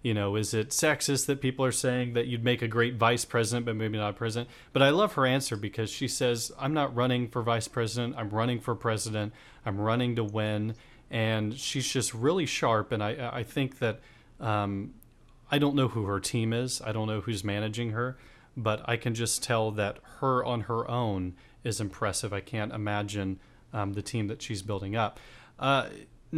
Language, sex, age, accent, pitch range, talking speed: English, male, 30-49, American, 110-130 Hz, 205 wpm